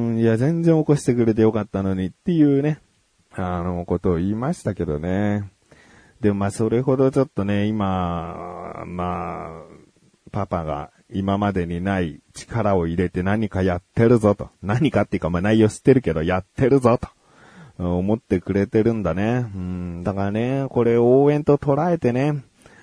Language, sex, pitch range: Japanese, male, 100-135 Hz